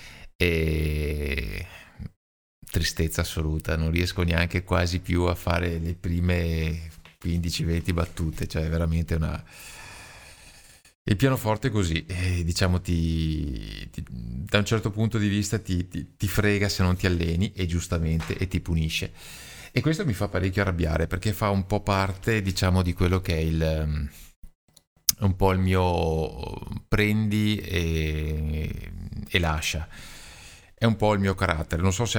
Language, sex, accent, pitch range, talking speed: Italian, male, native, 80-95 Hz, 145 wpm